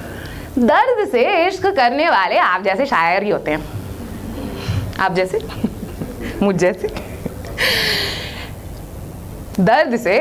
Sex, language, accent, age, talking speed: female, Hindi, native, 20-39, 100 wpm